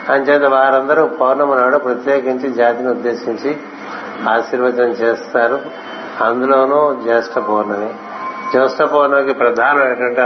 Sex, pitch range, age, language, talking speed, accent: male, 120-135 Hz, 60-79, Telugu, 90 wpm, native